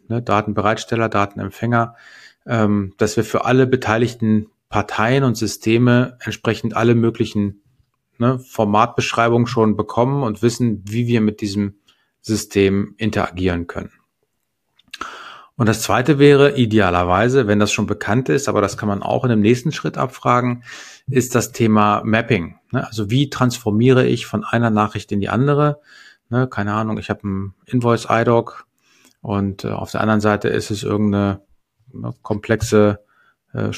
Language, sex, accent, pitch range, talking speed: English, male, German, 105-120 Hz, 135 wpm